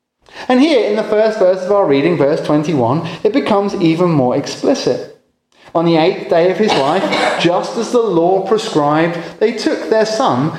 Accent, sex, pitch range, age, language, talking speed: British, male, 140-215 Hz, 30-49, English, 180 wpm